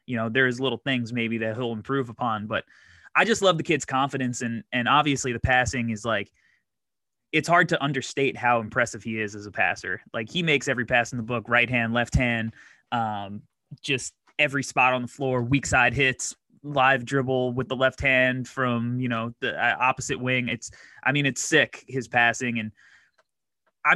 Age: 20-39